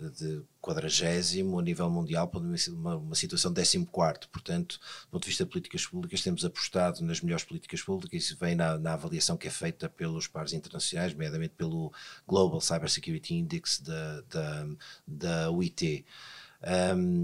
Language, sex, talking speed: Portuguese, male, 165 wpm